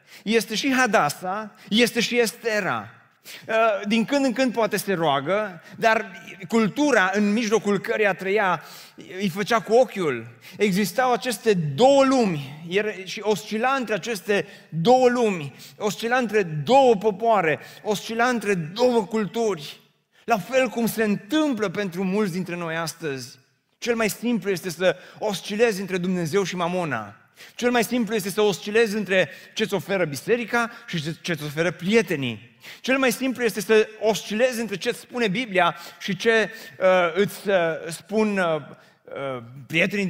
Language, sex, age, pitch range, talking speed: Romanian, male, 30-49, 185-230 Hz, 140 wpm